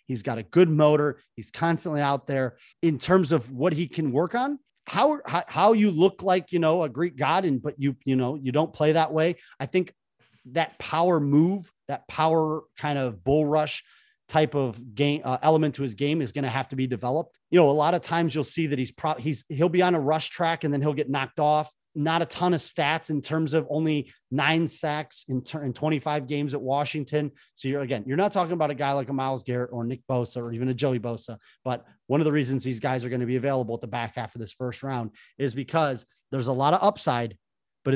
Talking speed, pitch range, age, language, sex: 240 wpm, 130-160 Hz, 30-49, English, male